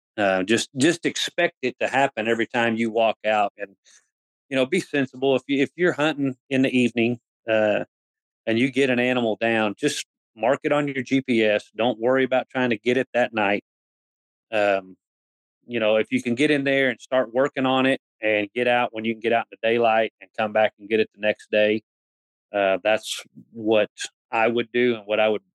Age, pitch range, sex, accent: 40-59, 110-130 Hz, male, American